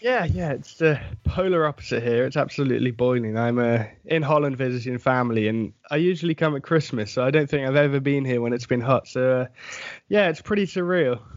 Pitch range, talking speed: 130-175 Hz, 210 wpm